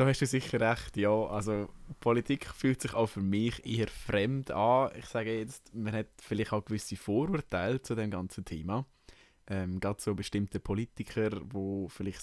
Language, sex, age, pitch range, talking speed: German, male, 20-39, 100-120 Hz, 175 wpm